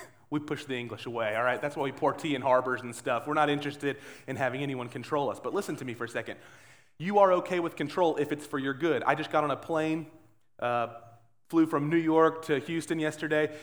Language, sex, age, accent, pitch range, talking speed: English, male, 30-49, American, 125-175 Hz, 240 wpm